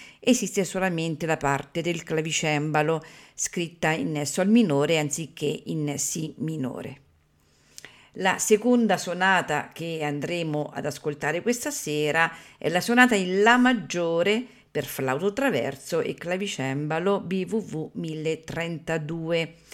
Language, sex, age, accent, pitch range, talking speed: Italian, female, 50-69, native, 150-205 Hz, 110 wpm